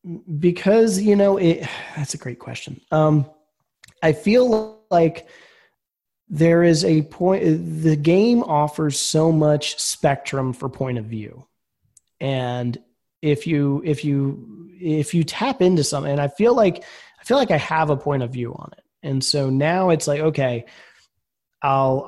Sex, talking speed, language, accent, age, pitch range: male, 155 wpm, English, American, 30-49, 140-180 Hz